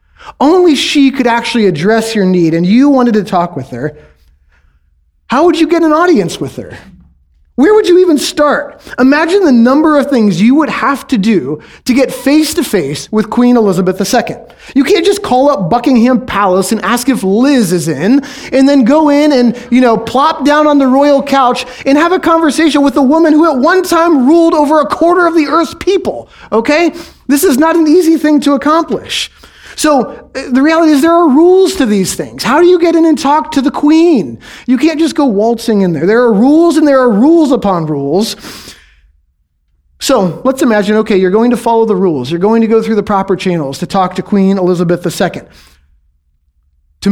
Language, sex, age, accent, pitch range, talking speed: English, male, 30-49, American, 195-300 Hz, 200 wpm